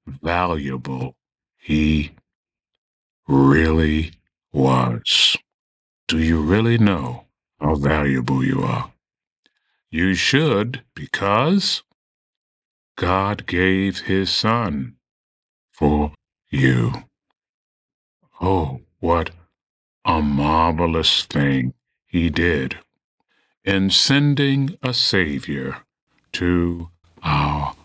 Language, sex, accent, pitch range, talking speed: English, male, American, 80-125 Hz, 75 wpm